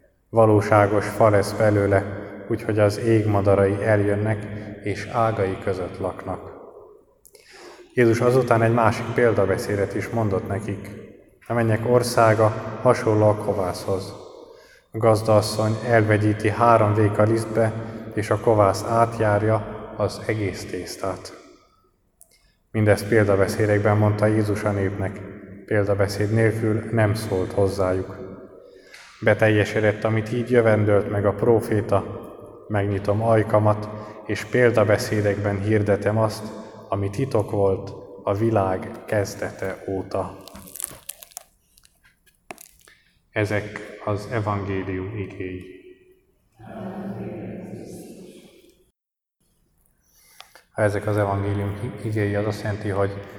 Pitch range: 100-110 Hz